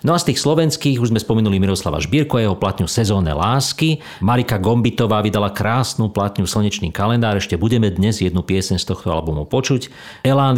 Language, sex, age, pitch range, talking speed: Slovak, male, 50-69, 100-125 Hz, 175 wpm